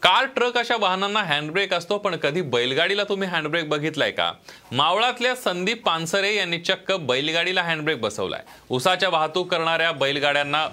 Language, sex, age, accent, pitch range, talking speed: Marathi, male, 30-49, native, 130-175 Hz, 140 wpm